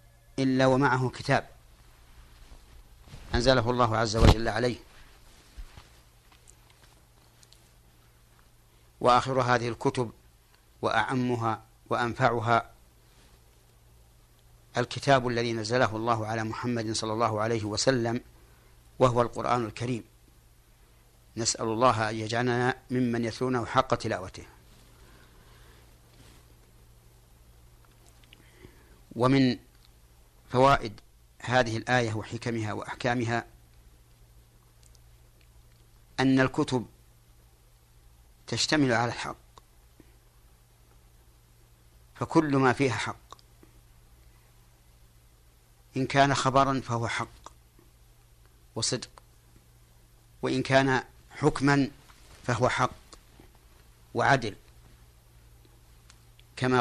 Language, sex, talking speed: Arabic, male, 65 wpm